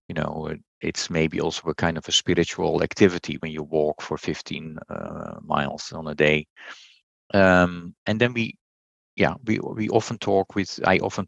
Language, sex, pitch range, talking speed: English, male, 80-95 Hz, 175 wpm